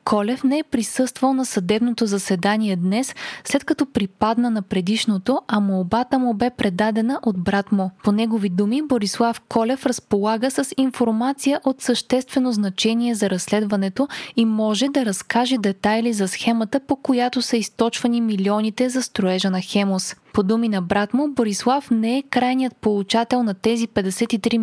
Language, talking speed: Bulgarian, 155 wpm